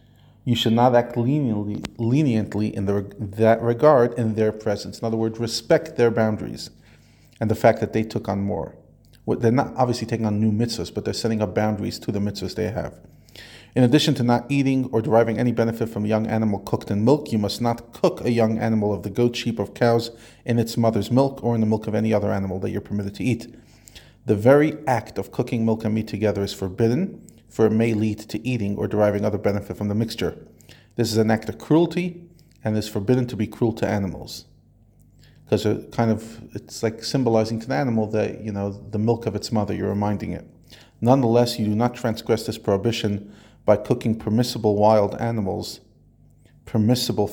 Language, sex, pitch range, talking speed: English, male, 105-120 Hz, 205 wpm